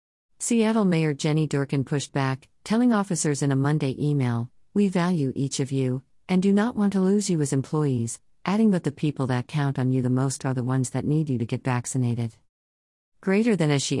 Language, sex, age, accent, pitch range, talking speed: English, female, 50-69, American, 130-155 Hz, 210 wpm